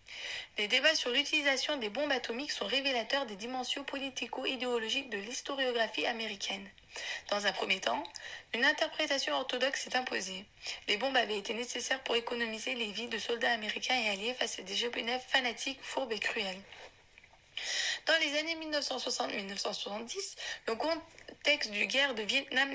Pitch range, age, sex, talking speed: 230-275 Hz, 20-39, female, 150 wpm